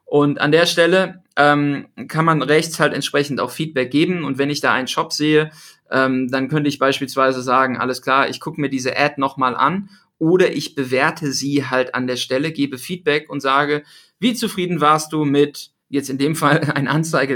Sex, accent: male, German